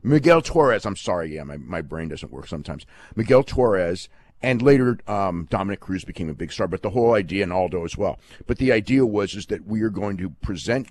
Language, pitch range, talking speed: English, 90-115 Hz, 225 wpm